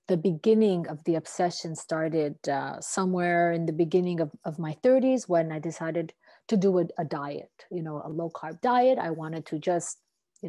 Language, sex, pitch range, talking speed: English, female, 160-200 Hz, 195 wpm